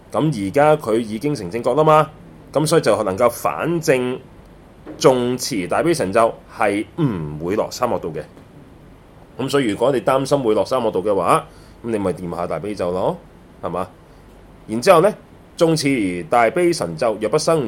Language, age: Chinese, 30-49